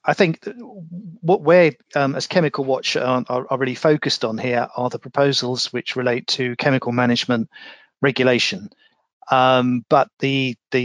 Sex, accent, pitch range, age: male, British, 120-140 Hz, 40-59